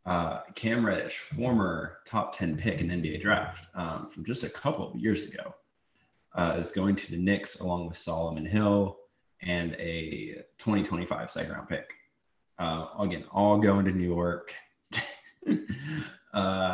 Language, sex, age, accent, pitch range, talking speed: English, male, 20-39, American, 85-100 Hz, 155 wpm